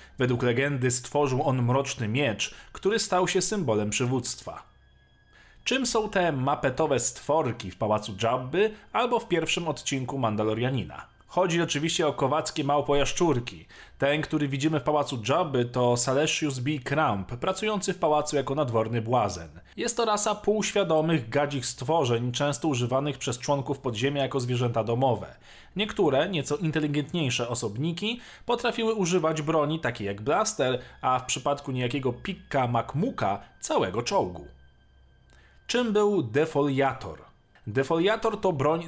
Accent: native